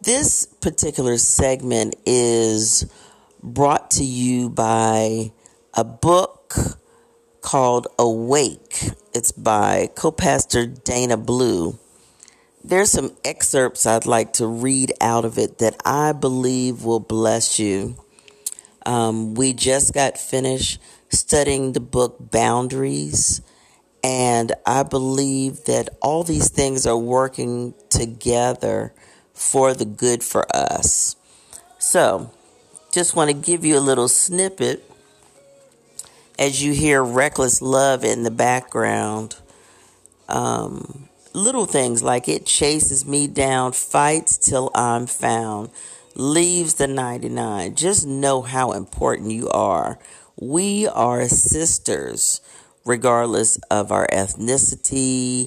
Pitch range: 115-140 Hz